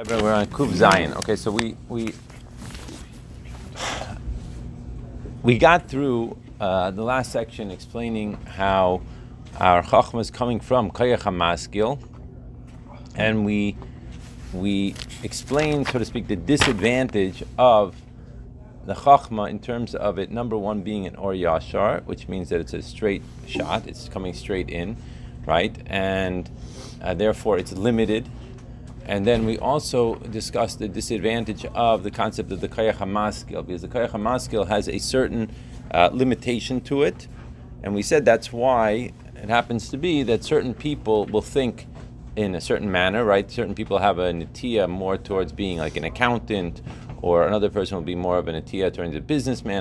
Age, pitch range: 30-49, 95-120 Hz